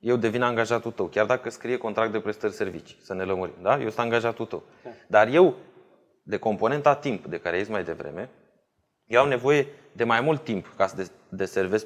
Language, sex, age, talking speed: Romanian, male, 20-39, 190 wpm